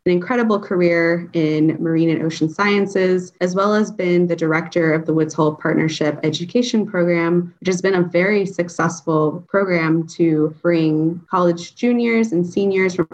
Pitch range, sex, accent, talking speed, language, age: 160-185 Hz, female, American, 160 wpm, English, 20-39